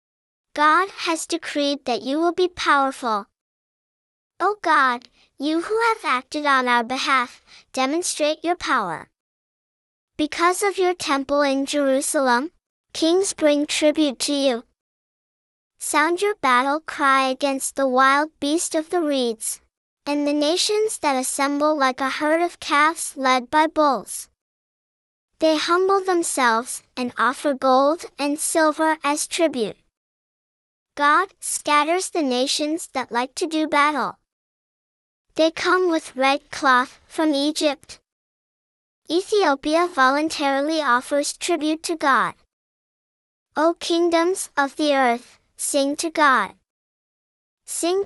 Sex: male